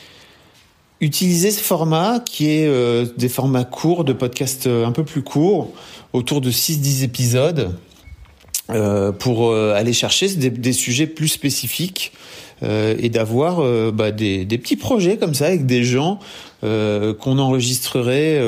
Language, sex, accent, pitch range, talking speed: French, male, French, 115-145 Hz, 150 wpm